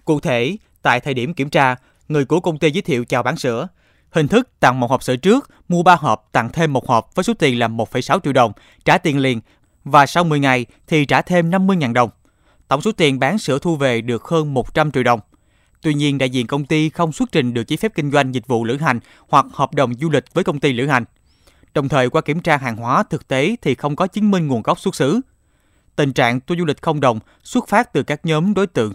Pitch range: 125-170 Hz